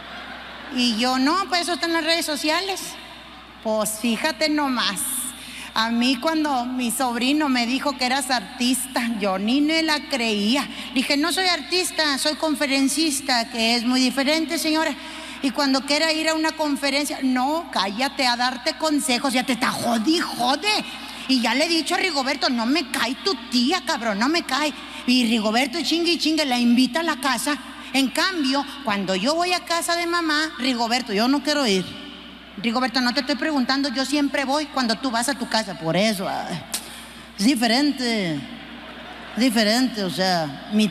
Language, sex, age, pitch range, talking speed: Spanish, female, 30-49, 240-300 Hz, 175 wpm